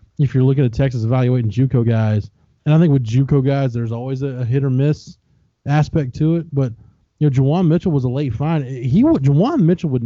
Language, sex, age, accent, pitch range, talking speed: English, male, 20-39, American, 105-135 Hz, 215 wpm